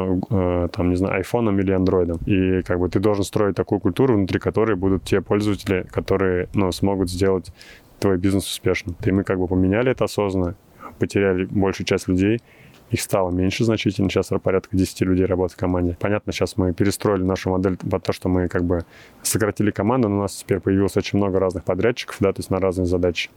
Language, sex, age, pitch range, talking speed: Russian, male, 20-39, 90-100 Hz, 200 wpm